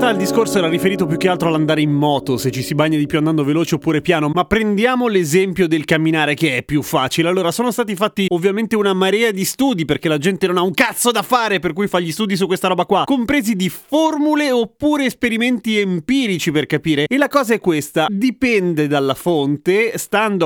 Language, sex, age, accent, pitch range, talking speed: Italian, male, 30-49, native, 150-210 Hz, 215 wpm